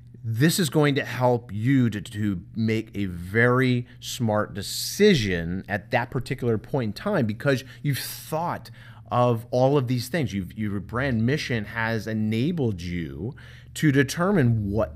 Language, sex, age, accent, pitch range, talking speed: English, male, 30-49, American, 105-125 Hz, 145 wpm